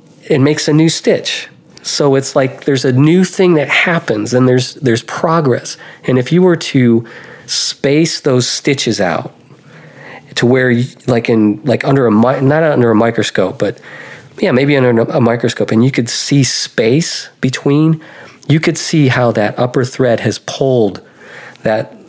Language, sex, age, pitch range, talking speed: English, male, 40-59, 115-130 Hz, 165 wpm